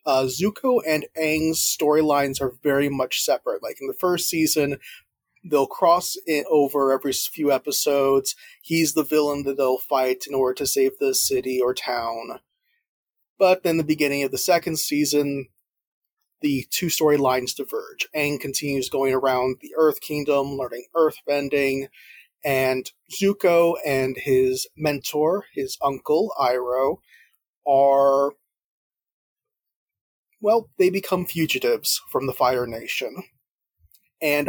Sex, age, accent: male, 30-49, American